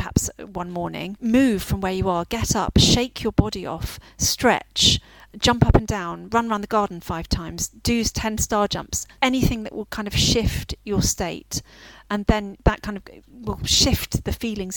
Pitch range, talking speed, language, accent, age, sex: 180-210 Hz, 185 wpm, English, British, 40-59, female